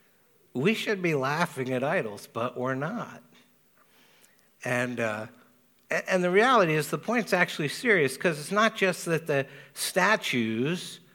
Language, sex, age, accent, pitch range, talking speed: English, male, 60-79, American, 135-180 Hz, 140 wpm